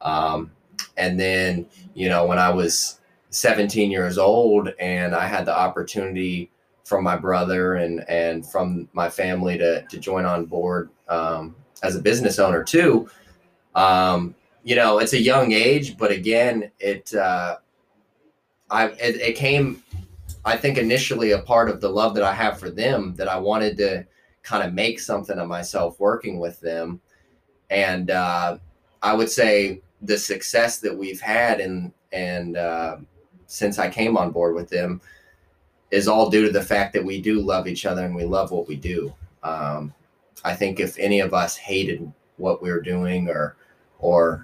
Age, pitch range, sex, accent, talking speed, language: 20-39, 85-105 Hz, male, American, 175 wpm, English